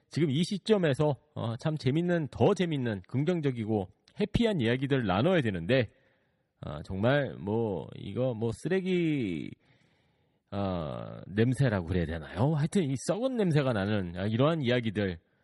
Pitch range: 110-160 Hz